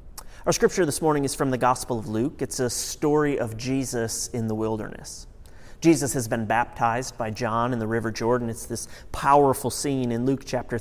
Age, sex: 30-49, male